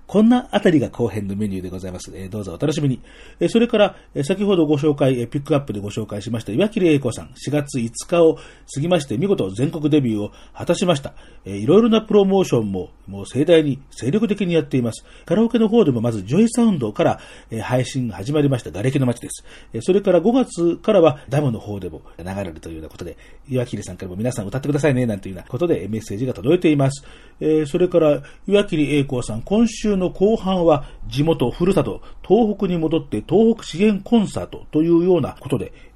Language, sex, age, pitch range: Japanese, male, 40-59, 110-180 Hz